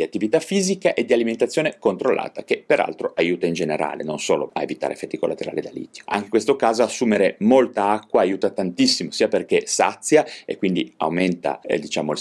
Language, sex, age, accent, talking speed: Italian, male, 30-49, native, 180 wpm